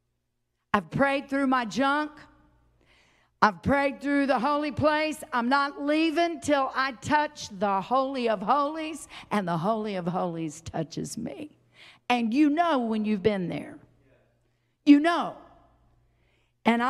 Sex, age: female, 50-69